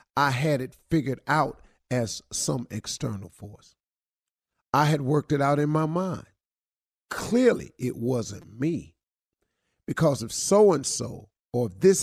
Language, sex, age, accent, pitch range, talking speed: English, male, 50-69, American, 110-150 Hz, 135 wpm